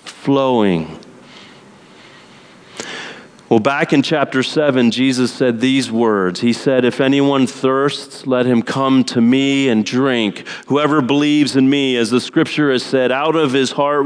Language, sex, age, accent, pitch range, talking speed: English, male, 40-59, American, 130-170 Hz, 150 wpm